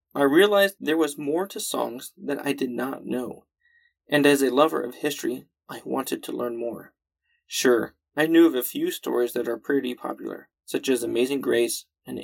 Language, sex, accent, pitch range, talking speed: English, male, American, 120-175 Hz, 190 wpm